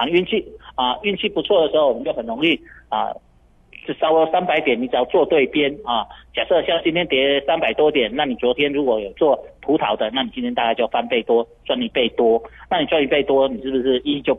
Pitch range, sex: 120-170 Hz, male